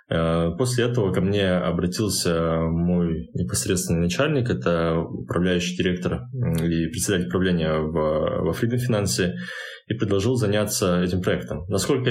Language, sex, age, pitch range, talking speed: Russian, male, 20-39, 85-110 Hz, 110 wpm